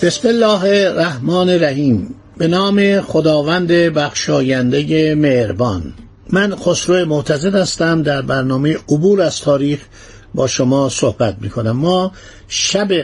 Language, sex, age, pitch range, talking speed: Persian, male, 60-79, 130-185 Hz, 115 wpm